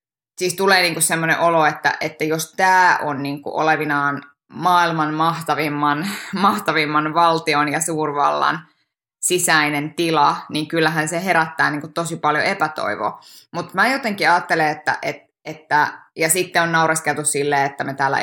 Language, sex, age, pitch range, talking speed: Finnish, female, 20-39, 150-185 Hz, 140 wpm